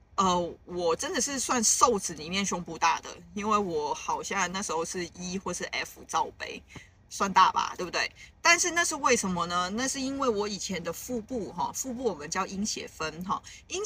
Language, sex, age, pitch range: Chinese, female, 20-39, 180-240 Hz